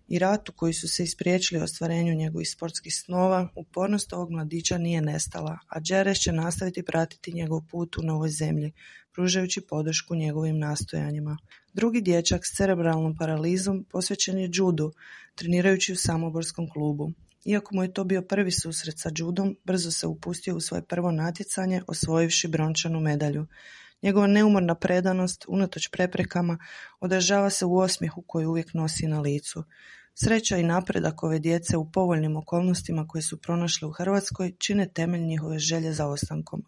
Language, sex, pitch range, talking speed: Croatian, female, 160-185 Hz, 155 wpm